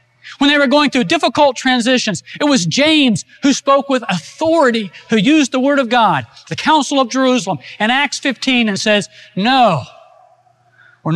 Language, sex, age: English, male, 40-59